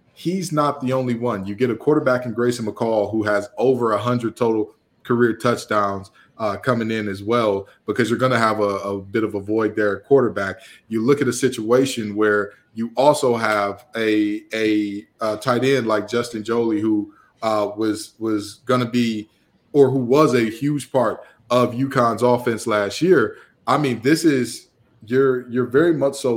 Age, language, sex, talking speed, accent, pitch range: 20-39, English, male, 190 wpm, American, 105-125 Hz